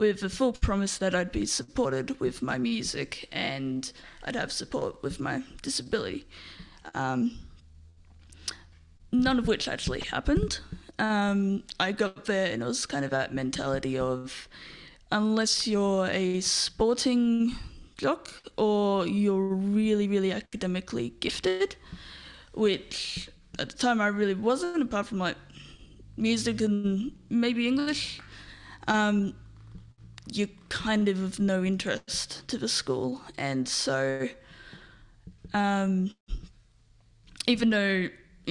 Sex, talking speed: female, 115 wpm